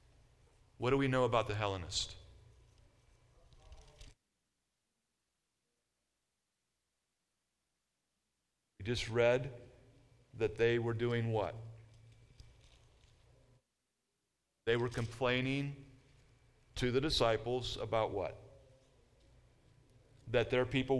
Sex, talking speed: male, 75 wpm